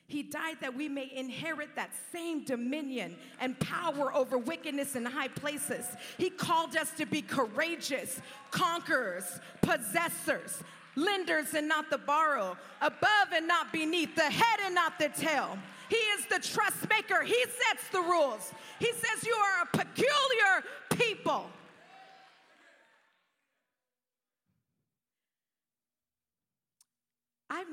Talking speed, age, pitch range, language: 120 wpm, 40-59, 245-320 Hz, English